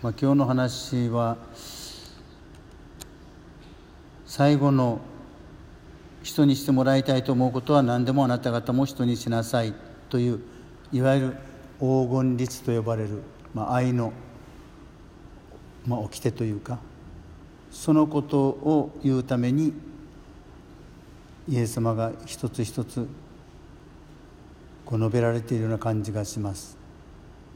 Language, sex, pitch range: Japanese, male, 110-130 Hz